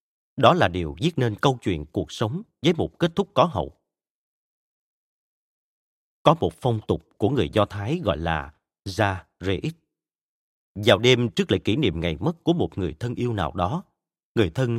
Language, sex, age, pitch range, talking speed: Vietnamese, male, 30-49, 105-140 Hz, 180 wpm